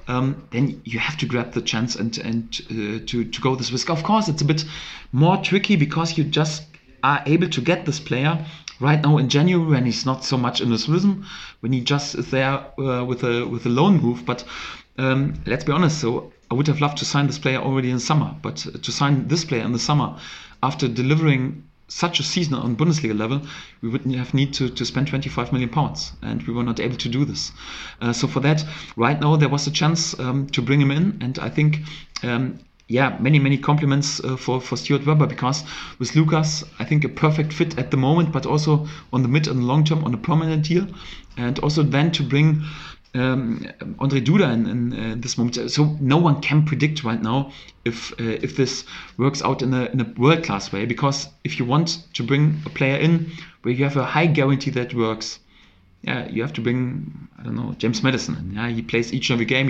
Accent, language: German, English